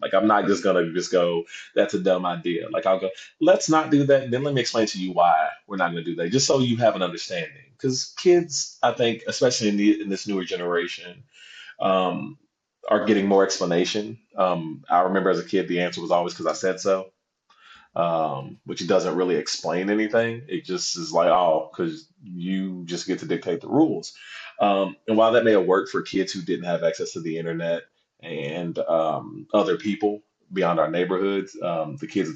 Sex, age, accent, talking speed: male, 30-49, American, 210 wpm